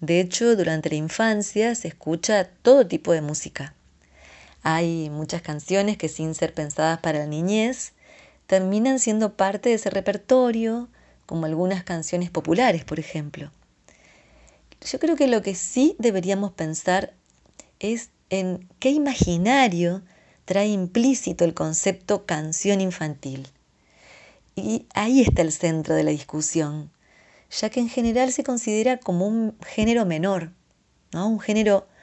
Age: 30-49